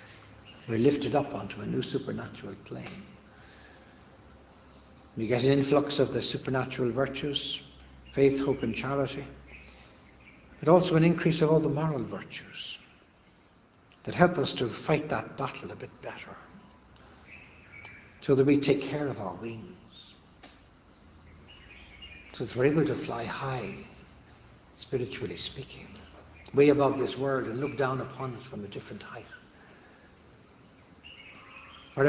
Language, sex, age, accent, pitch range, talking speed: English, male, 60-79, Irish, 105-150 Hz, 130 wpm